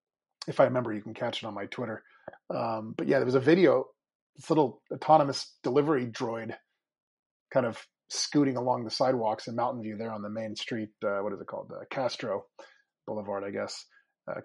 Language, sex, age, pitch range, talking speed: English, male, 30-49, 115-145 Hz, 195 wpm